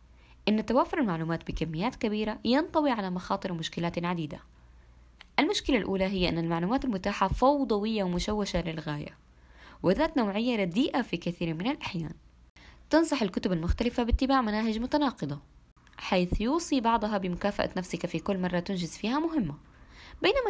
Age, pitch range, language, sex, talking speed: 20-39, 165-245 Hz, Arabic, female, 130 wpm